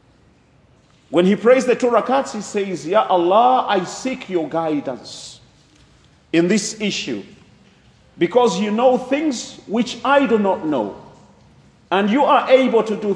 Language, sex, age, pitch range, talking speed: English, male, 40-59, 170-255 Hz, 140 wpm